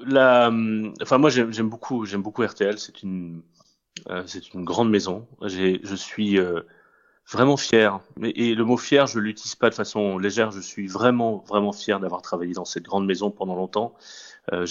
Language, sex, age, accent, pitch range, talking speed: French, male, 30-49, French, 95-110 Hz, 190 wpm